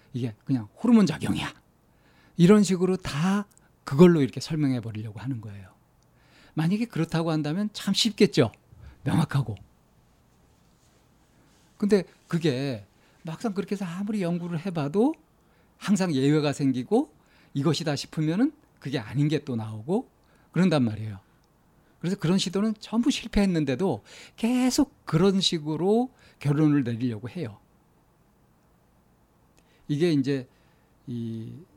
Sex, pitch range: male, 125-175 Hz